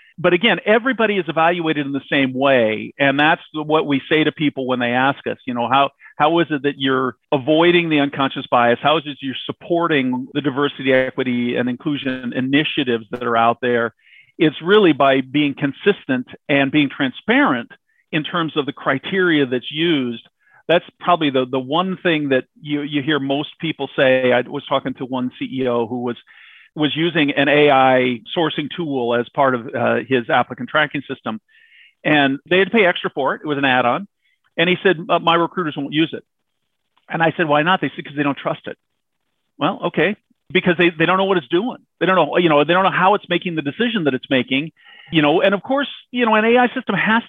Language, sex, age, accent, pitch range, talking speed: English, male, 50-69, American, 135-180 Hz, 210 wpm